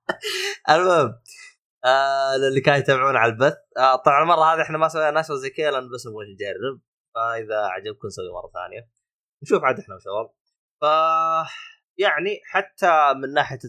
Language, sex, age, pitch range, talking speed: Arabic, male, 20-39, 105-145 Hz, 155 wpm